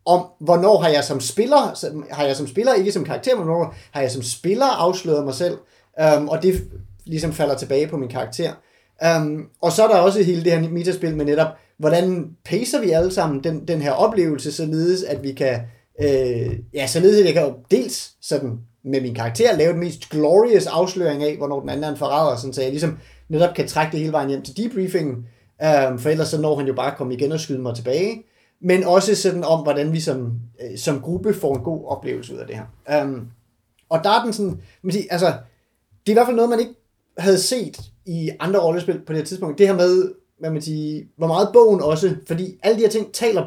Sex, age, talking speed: male, 30-49, 230 wpm